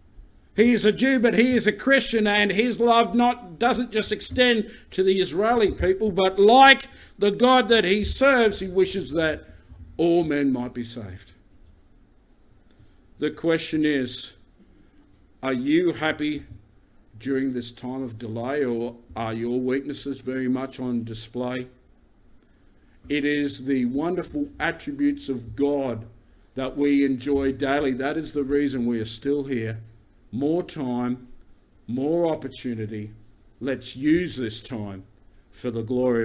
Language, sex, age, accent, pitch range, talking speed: English, male, 50-69, Australian, 115-165 Hz, 140 wpm